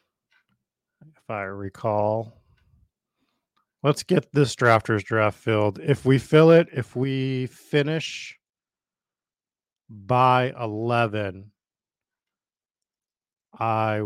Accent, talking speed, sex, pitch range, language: American, 75 wpm, male, 100-120 Hz, English